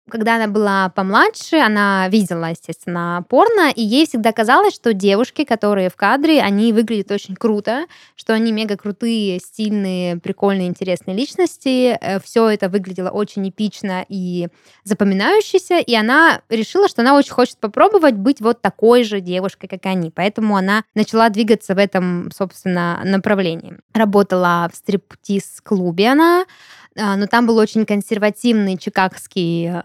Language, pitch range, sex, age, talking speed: Russian, 185-235 Hz, female, 20-39, 135 wpm